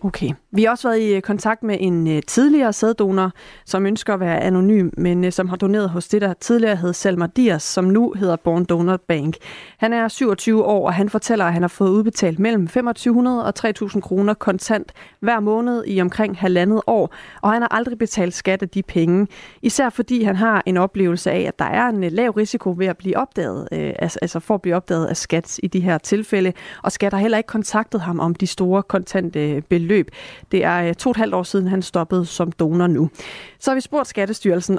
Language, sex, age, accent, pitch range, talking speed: Danish, female, 30-49, native, 180-220 Hz, 220 wpm